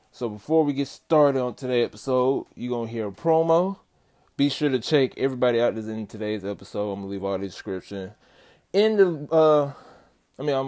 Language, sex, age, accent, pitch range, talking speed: English, male, 20-39, American, 105-140 Hz, 215 wpm